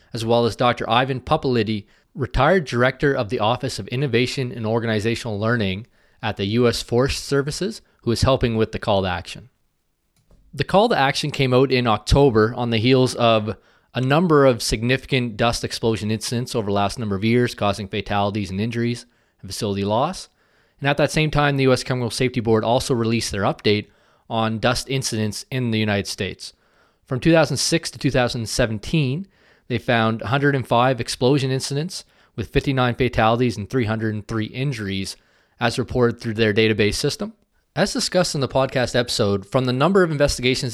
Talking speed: 170 wpm